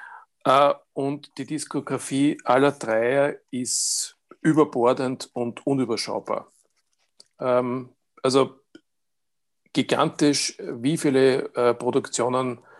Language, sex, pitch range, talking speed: German, male, 120-140 Hz, 65 wpm